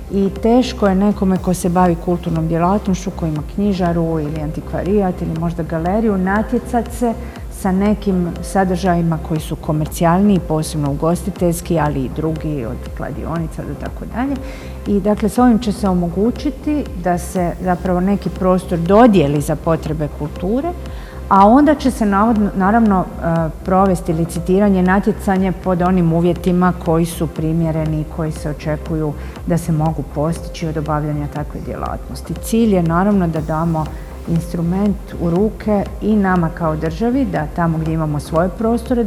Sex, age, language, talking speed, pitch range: female, 50-69, Croatian, 145 wpm, 160-200 Hz